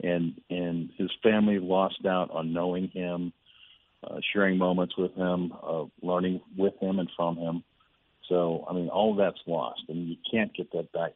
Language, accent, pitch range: English, American, 85-100 Hz